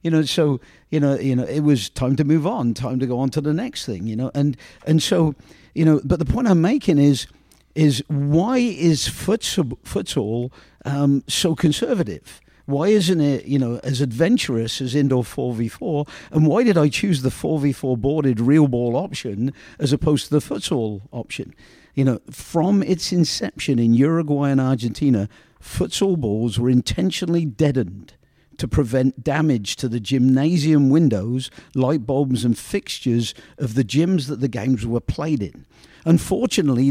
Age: 50-69